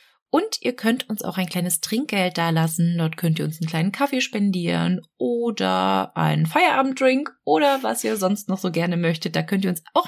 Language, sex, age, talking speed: German, female, 20-39, 200 wpm